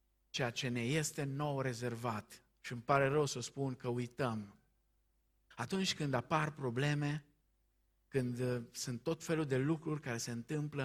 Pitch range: 115-140 Hz